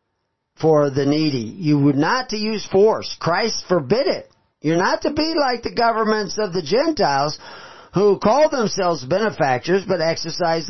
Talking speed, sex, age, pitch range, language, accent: 155 wpm, male, 40-59, 170-250 Hz, English, American